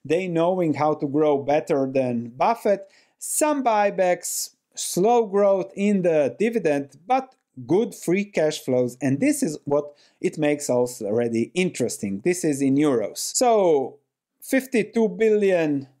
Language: English